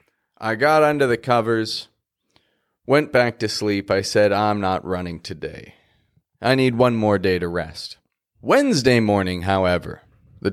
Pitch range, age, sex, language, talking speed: 105-155 Hz, 30-49, male, English, 150 wpm